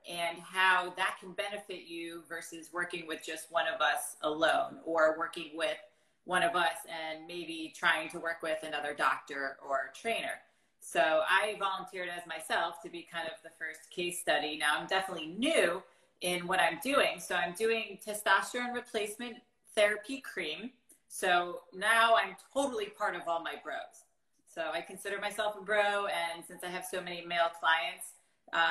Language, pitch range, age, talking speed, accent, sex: English, 165-210 Hz, 30-49, 170 wpm, American, female